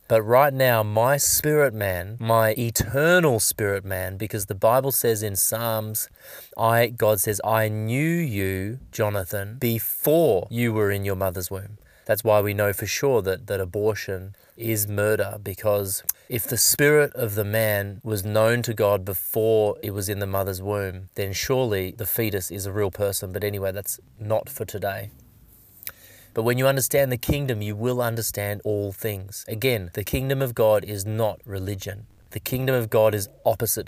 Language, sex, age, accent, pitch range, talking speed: English, male, 20-39, Australian, 100-120 Hz, 175 wpm